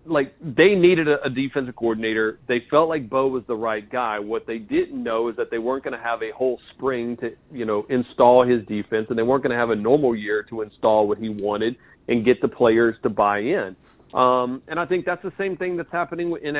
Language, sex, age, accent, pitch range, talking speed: English, male, 40-59, American, 120-155 Hz, 240 wpm